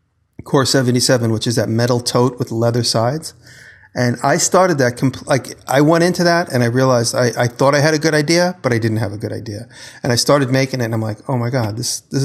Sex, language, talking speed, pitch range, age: male, English, 250 wpm, 115-135 Hz, 40-59